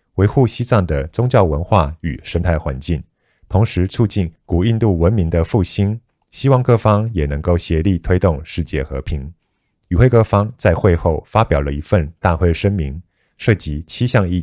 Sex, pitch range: male, 80-110 Hz